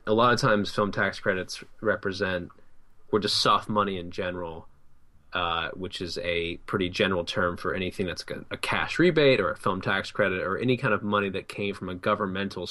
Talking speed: 200 wpm